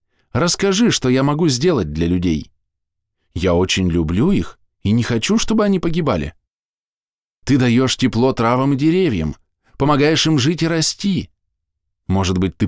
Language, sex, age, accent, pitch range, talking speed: Russian, male, 20-39, native, 85-120 Hz, 145 wpm